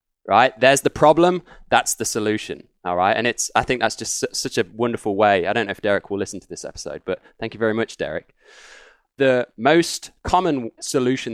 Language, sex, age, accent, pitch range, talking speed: English, male, 20-39, British, 110-140 Hz, 205 wpm